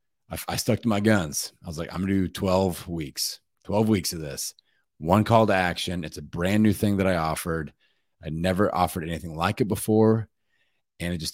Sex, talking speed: male, 205 wpm